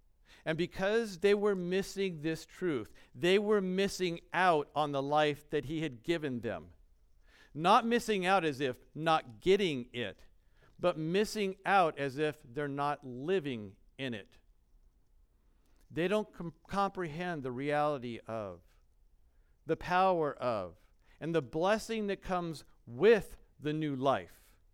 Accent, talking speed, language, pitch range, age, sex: American, 135 wpm, English, 100-160 Hz, 50-69, male